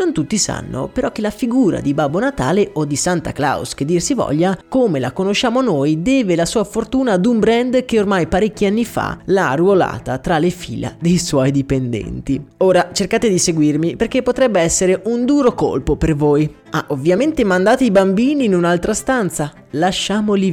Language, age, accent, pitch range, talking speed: Italian, 20-39, native, 145-215 Hz, 185 wpm